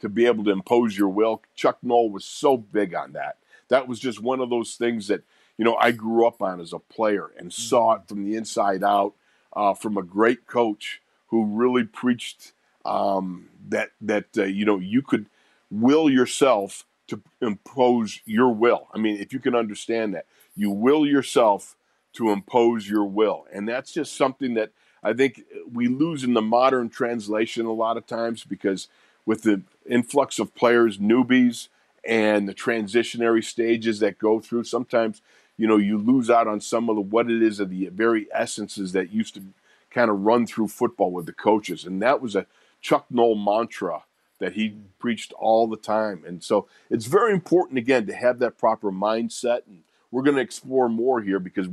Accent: American